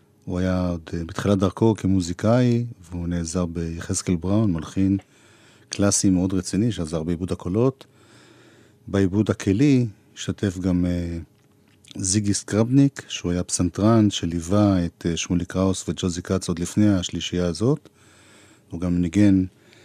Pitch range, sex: 95-110 Hz, male